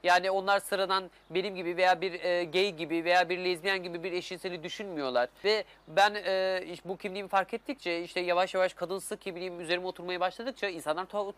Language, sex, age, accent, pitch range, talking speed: Turkish, male, 30-49, native, 180-215 Hz, 180 wpm